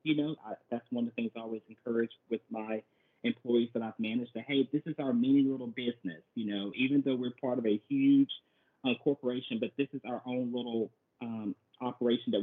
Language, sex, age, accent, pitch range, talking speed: English, male, 40-59, American, 120-145 Hz, 210 wpm